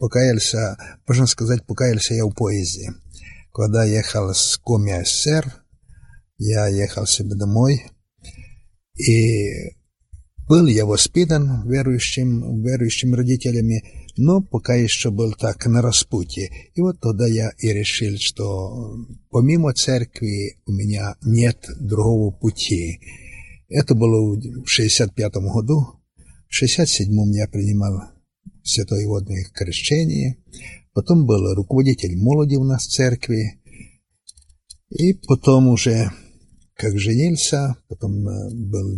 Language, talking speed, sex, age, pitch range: Russian, 110 wpm, male, 60-79, 100-125 Hz